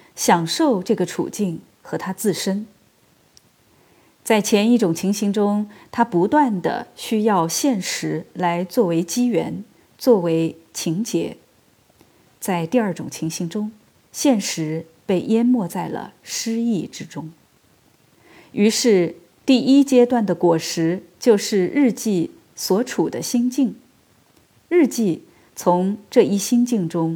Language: Chinese